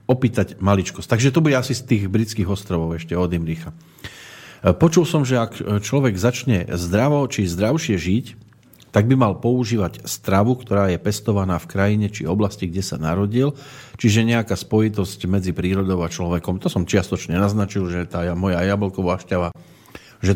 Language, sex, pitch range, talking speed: Slovak, male, 90-125 Hz, 160 wpm